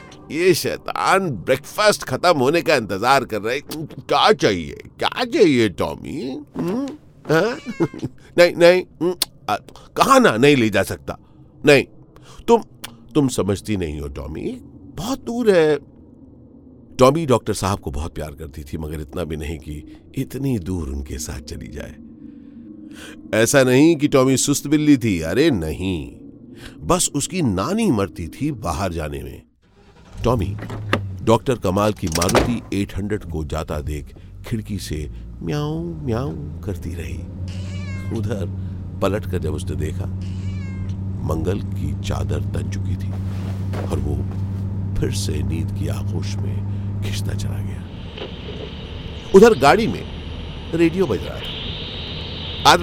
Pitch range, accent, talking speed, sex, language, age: 85-120 Hz, native, 135 wpm, male, Hindi, 50-69